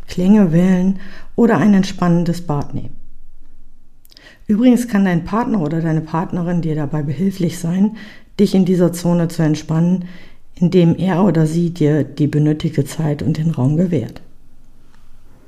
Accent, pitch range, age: German, 155-185 Hz, 50-69